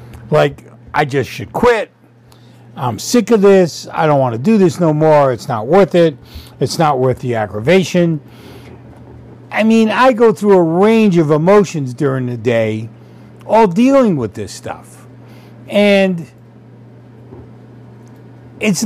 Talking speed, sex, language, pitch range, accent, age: 145 wpm, male, English, 120-160 Hz, American, 50-69